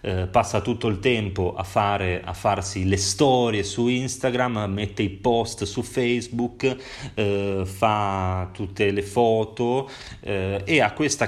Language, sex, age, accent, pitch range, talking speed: Italian, male, 30-49, native, 95-120 Hz, 135 wpm